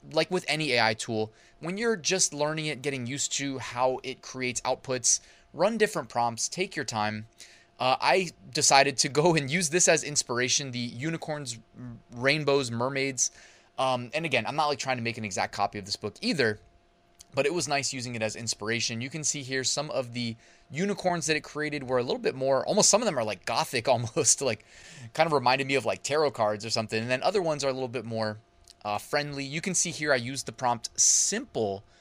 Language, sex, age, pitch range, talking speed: English, male, 20-39, 110-145 Hz, 215 wpm